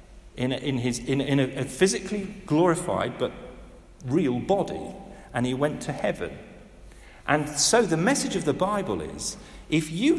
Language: English